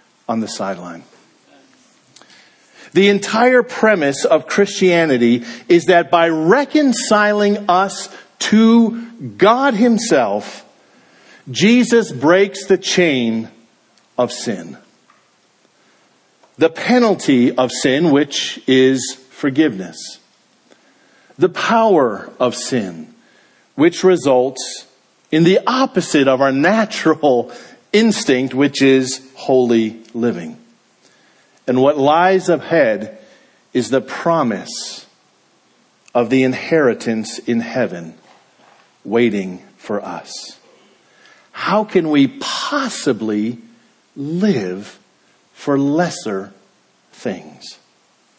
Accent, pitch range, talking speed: American, 130-195 Hz, 85 wpm